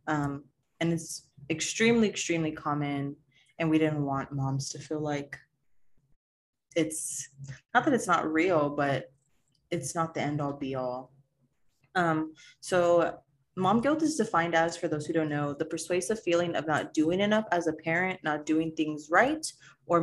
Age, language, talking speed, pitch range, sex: 20-39, English, 155 wpm, 145-170 Hz, female